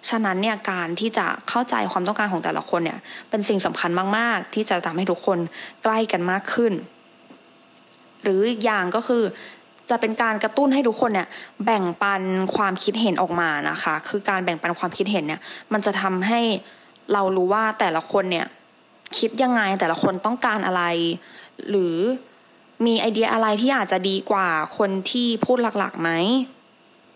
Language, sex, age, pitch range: English, female, 20-39, 190-230 Hz